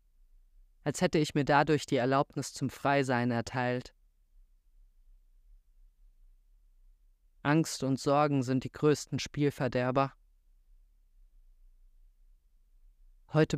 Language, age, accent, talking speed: German, 30-49, German, 80 wpm